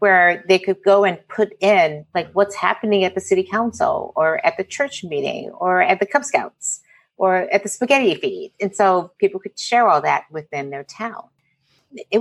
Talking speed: 195 wpm